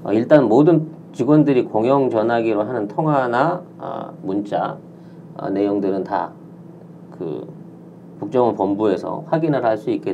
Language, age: Korean, 40-59